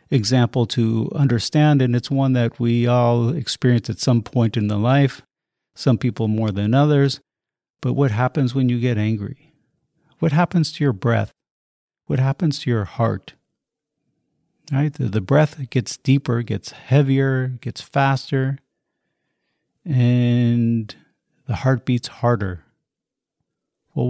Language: English